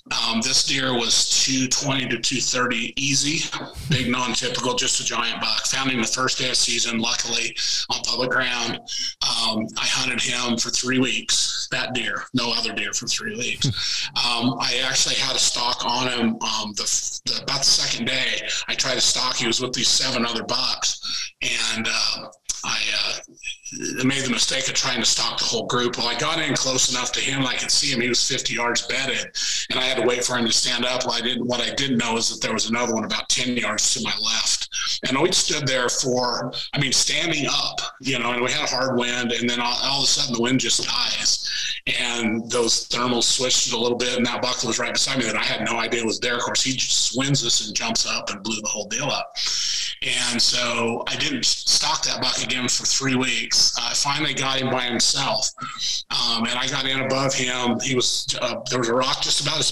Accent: American